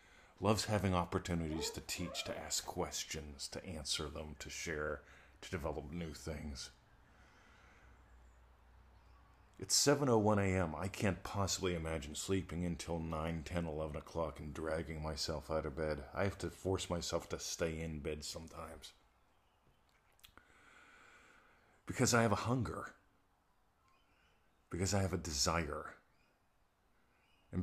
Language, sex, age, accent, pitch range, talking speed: English, male, 40-59, American, 80-100 Hz, 125 wpm